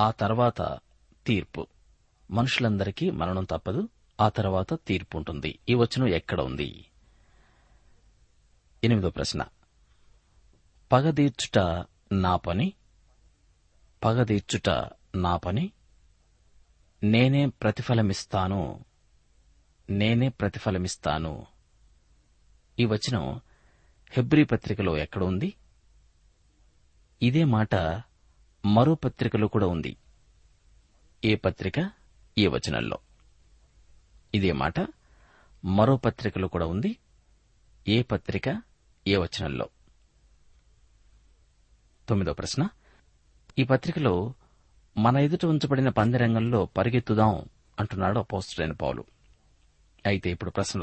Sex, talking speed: male, 65 wpm